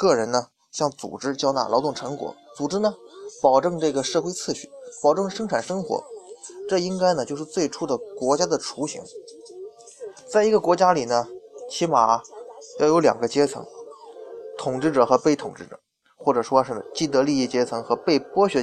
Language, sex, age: Chinese, male, 20-39